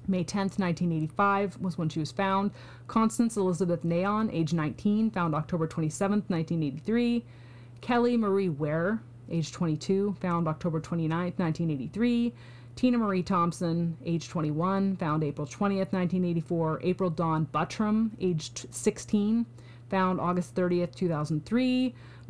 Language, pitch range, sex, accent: English, 155-205 Hz, female, American